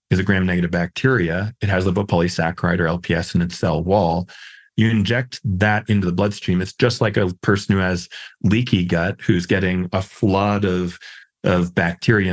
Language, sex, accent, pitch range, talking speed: English, male, American, 85-105 Hz, 170 wpm